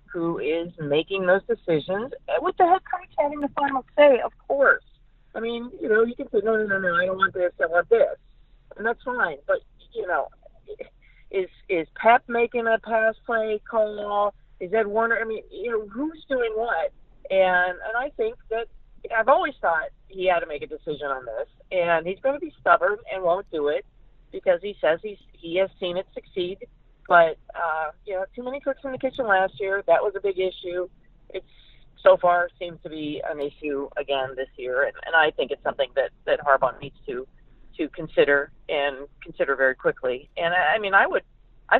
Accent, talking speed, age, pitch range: American, 205 wpm, 50-69, 170-270 Hz